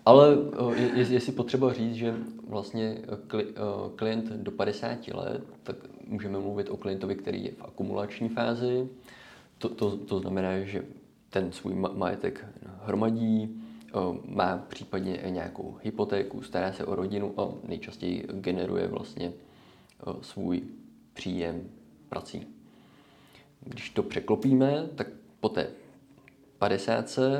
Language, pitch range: Czech, 100-120 Hz